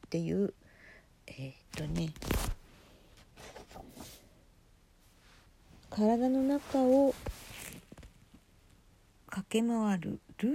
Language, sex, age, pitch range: Japanese, female, 50-69, 170-230 Hz